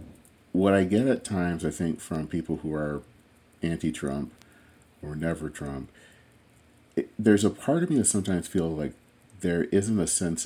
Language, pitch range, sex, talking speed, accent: English, 75-95 Hz, male, 155 wpm, American